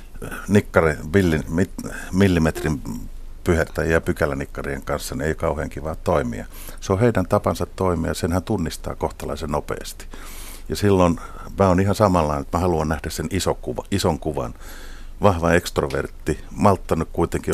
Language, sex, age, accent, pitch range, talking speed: Finnish, male, 50-69, native, 75-90 Hz, 130 wpm